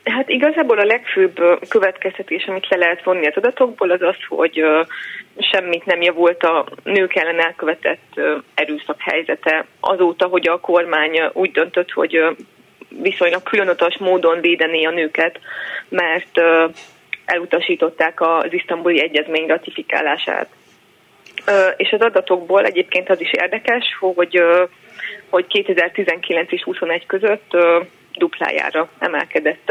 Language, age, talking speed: Hungarian, 30-49, 115 wpm